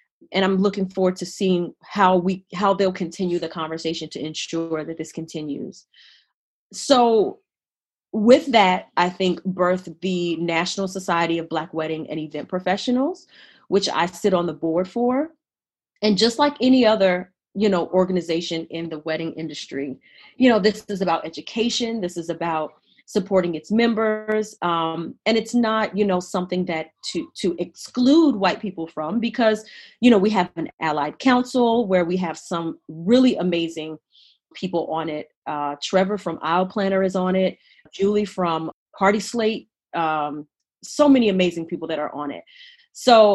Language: English